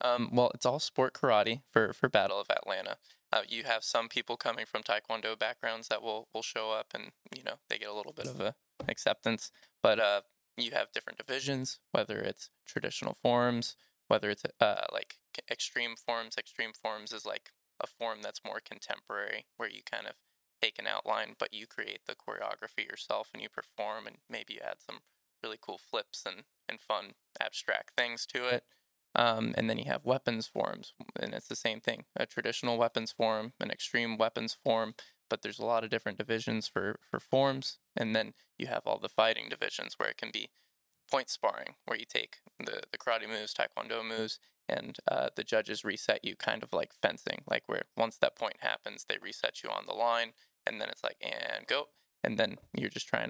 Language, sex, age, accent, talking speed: English, male, 20-39, American, 200 wpm